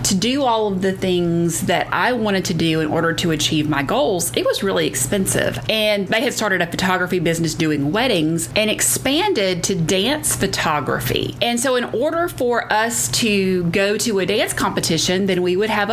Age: 30-49